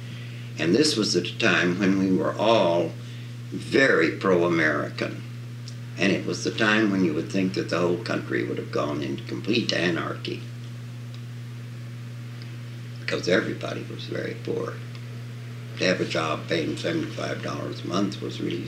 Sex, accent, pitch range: male, American, 105-120 Hz